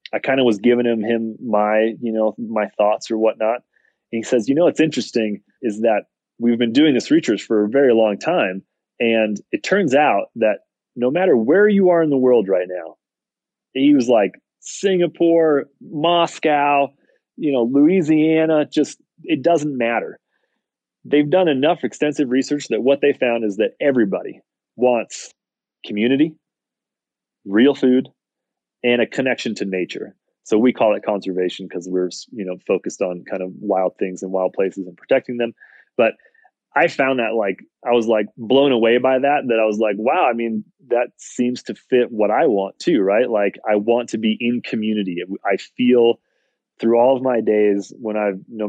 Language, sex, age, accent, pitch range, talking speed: English, male, 30-49, American, 105-140 Hz, 180 wpm